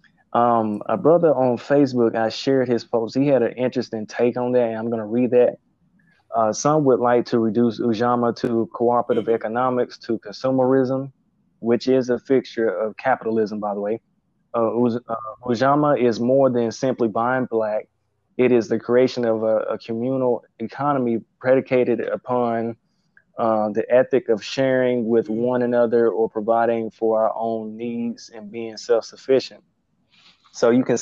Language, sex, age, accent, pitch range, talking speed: English, male, 20-39, American, 110-125 Hz, 155 wpm